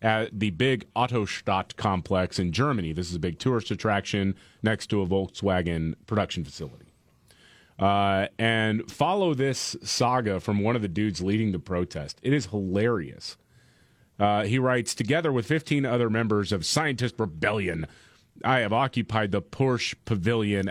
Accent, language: American, English